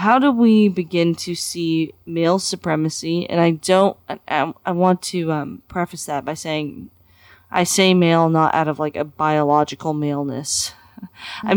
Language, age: English, 20-39